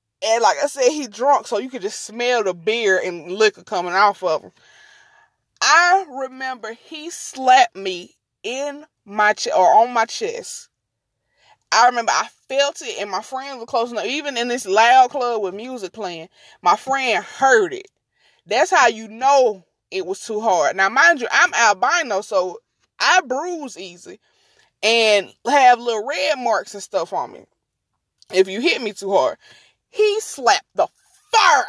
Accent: American